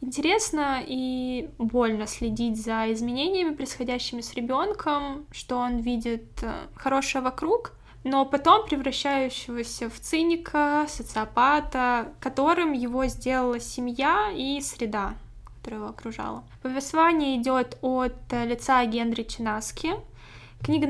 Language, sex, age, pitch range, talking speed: Russian, female, 10-29, 240-300 Hz, 105 wpm